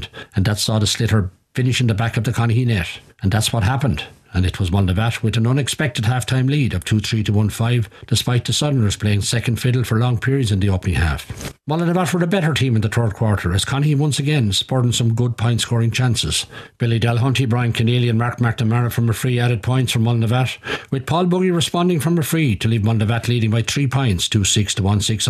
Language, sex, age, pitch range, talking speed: English, male, 60-79, 110-130 Hz, 215 wpm